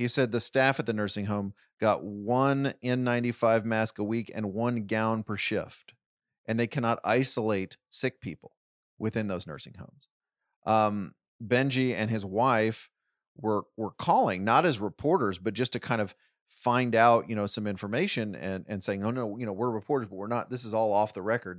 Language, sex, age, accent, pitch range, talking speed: English, male, 30-49, American, 100-120 Hz, 190 wpm